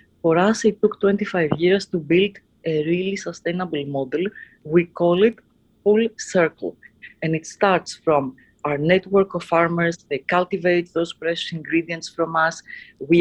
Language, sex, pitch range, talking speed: English, female, 165-210 Hz, 150 wpm